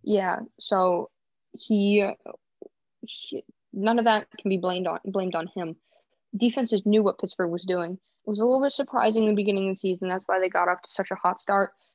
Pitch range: 180-210 Hz